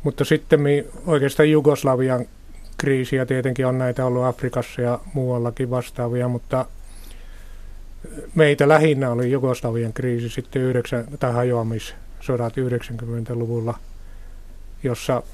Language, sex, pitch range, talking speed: Finnish, male, 85-130 Hz, 95 wpm